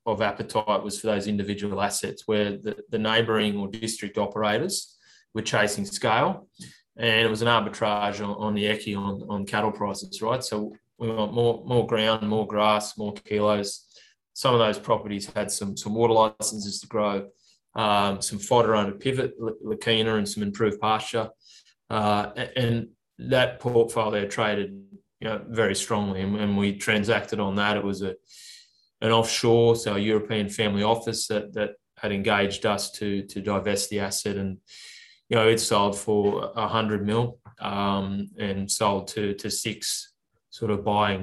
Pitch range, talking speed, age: 100-115 Hz, 170 wpm, 20-39